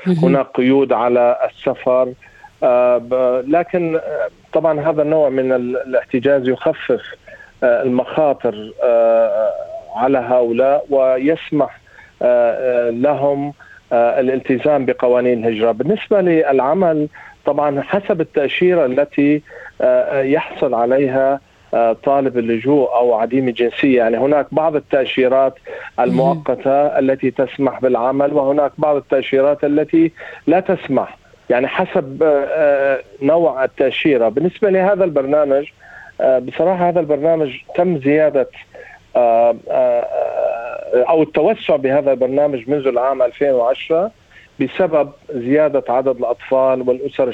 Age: 40-59